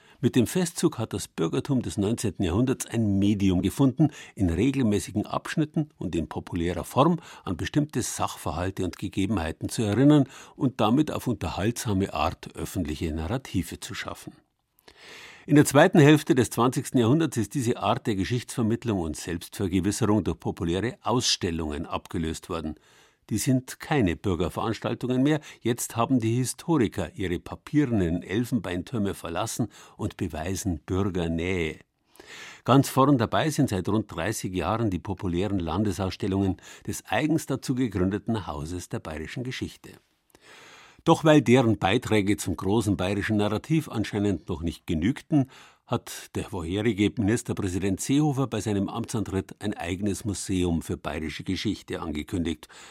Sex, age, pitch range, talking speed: male, 50-69, 90-125 Hz, 135 wpm